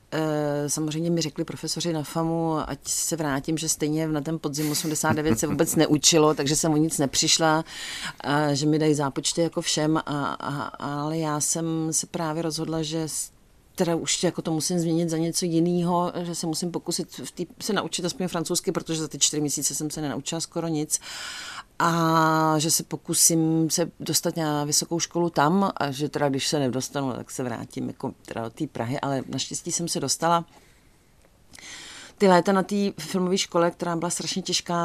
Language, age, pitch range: Czech, 40-59, 150-175 Hz